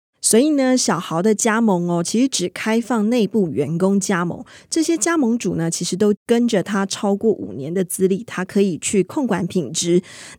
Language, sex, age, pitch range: Chinese, female, 20-39, 185-230 Hz